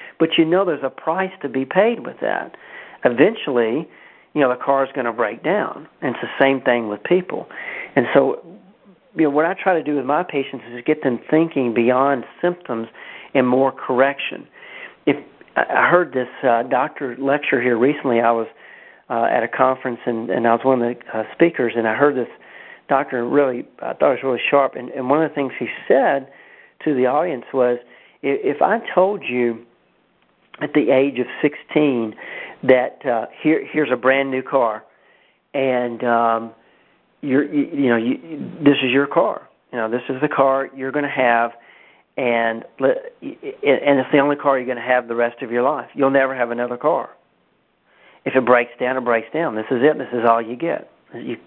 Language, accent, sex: English, American, male